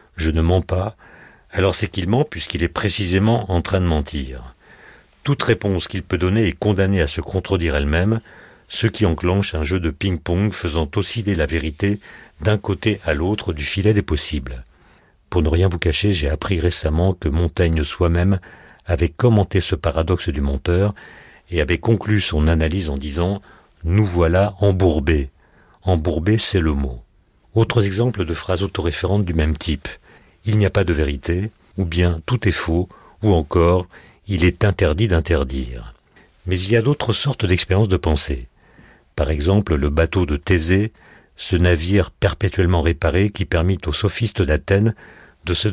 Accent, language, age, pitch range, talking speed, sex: French, French, 50-69, 80-100 Hz, 175 wpm, male